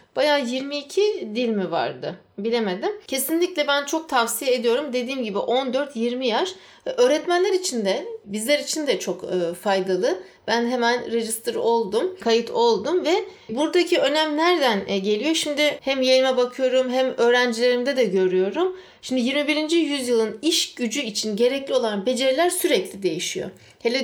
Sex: female